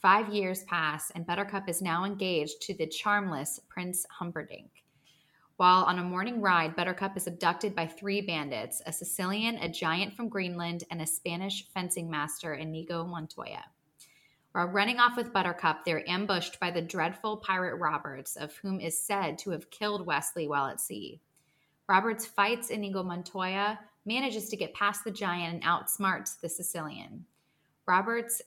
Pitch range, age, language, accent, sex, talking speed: 165-205 Hz, 20-39, English, American, female, 160 wpm